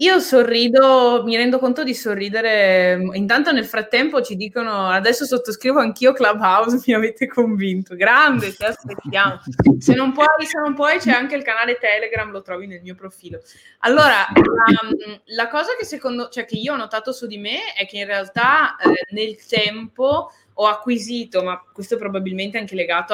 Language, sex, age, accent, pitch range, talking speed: Italian, female, 20-39, native, 190-245 Hz, 175 wpm